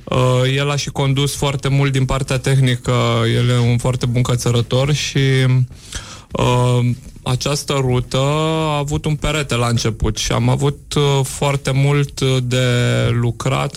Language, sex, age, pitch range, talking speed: Romanian, male, 20-39, 125-140 Hz, 135 wpm